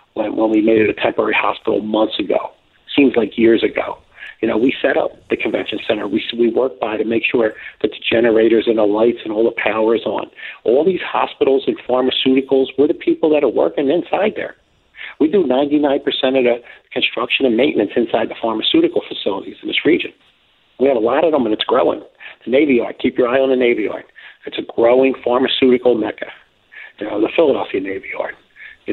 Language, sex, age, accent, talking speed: English, male, 50-69, American, 205 wpm